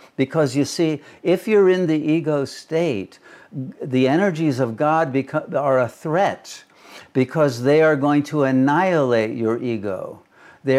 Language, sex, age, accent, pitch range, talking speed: English, male, 60-79, American, 115-145 Hz, 140 wpm